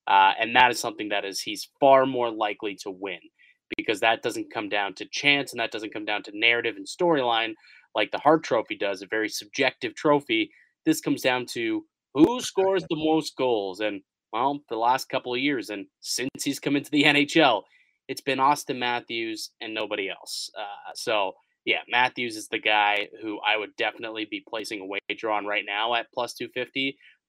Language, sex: English, male